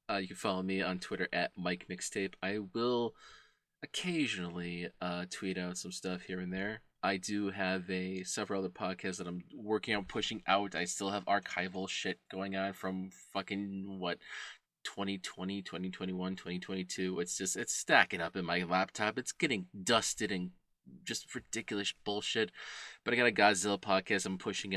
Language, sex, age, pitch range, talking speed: English, male, 20-39, 90-100 Hz, 170 wpm